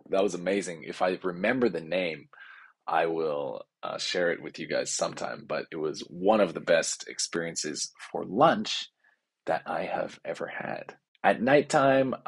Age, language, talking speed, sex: 20-39, English, 165 wpm, male